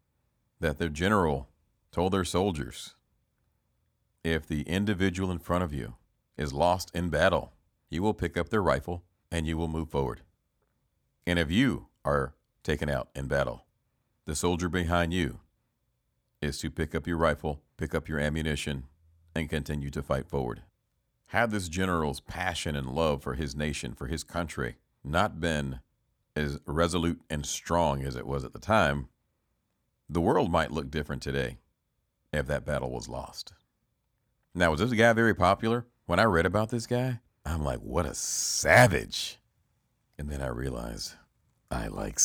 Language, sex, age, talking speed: English, male, 40-59, 160 wpm